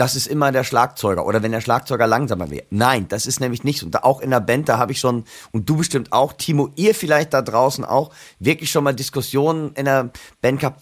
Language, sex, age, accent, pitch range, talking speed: German, male, 40-59, German, 130-155 Hz, 240 wpm